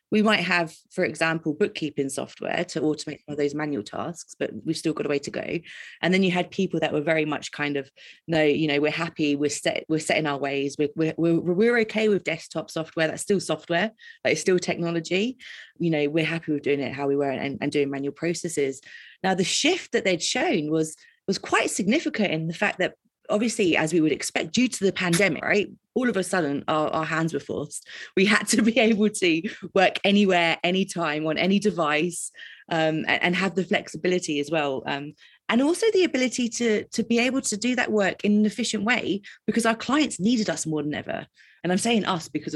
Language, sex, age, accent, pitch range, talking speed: English, female, 30-49, British, 155-215 Hz, 220 wpm